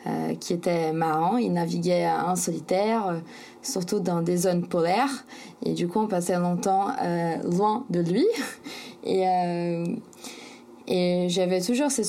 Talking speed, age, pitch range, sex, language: 150 wpm, 20-39, 175-200 Hz, female, French